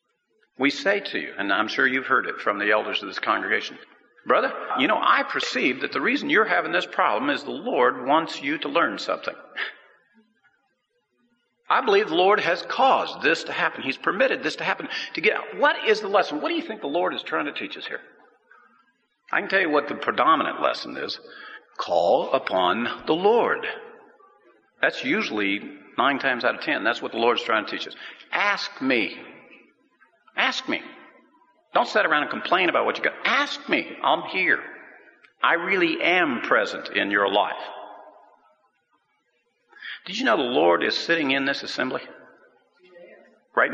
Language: English